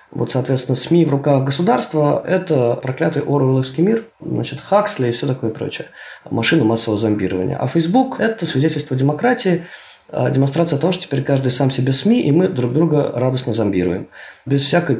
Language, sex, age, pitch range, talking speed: Russian, male, 20-39, 115-155 Hz, 160 wpm